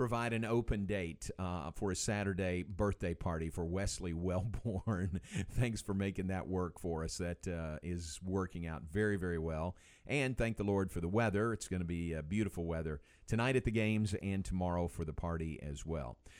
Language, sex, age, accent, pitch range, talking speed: English, male, 50-69, American, 95-120 Hz, 195 wpm